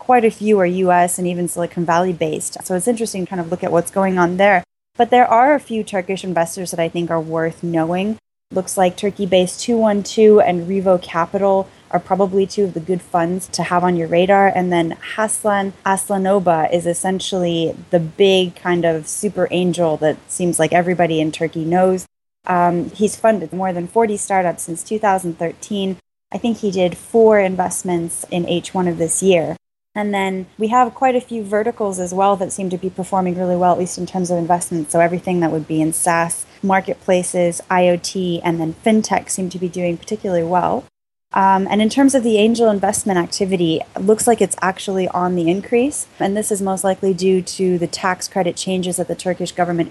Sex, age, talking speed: female, 20-39, 200 wpm